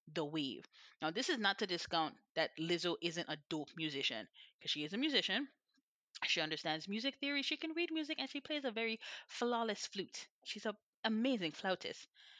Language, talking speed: English, 185 wpm